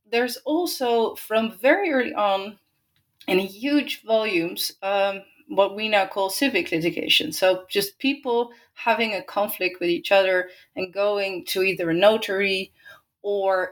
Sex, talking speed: female, 140 wpm